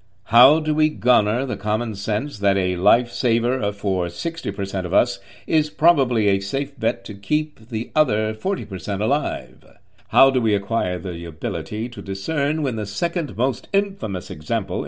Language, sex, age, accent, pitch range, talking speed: English, male, 60-79, American, 100-140 Hz, 160 wpm